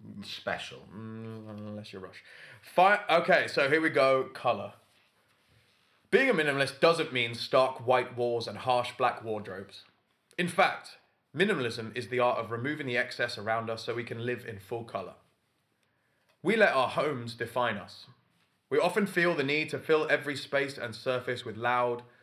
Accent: British